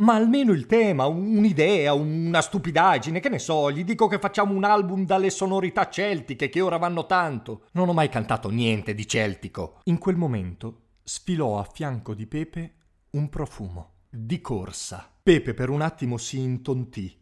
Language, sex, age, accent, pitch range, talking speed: Italian, male, 40-59, native, 110-150 Hz, 165 wpm